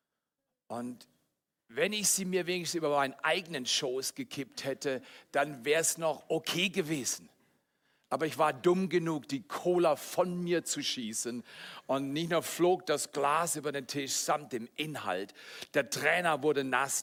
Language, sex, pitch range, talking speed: German, male, 120-170 Hz, 160 wpm